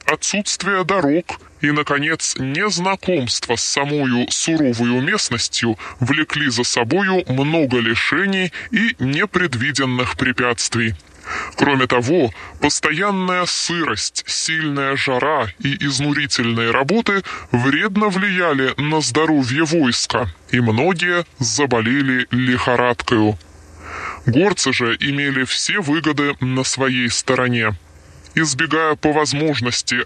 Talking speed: 90 wpm